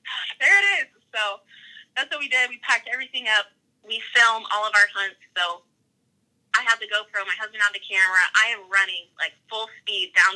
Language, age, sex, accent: English, 20-39, female, American